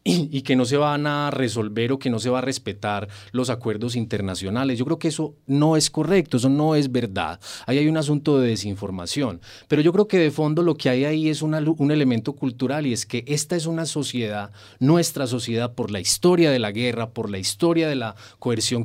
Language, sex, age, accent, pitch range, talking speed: Spanish, male, 30-49, Colombian, 115-155 Hz, 225 wpm